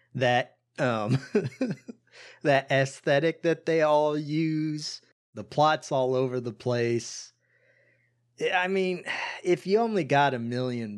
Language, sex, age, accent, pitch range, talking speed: English, male, 30-49, American, 120-150 Hz, 120 wpm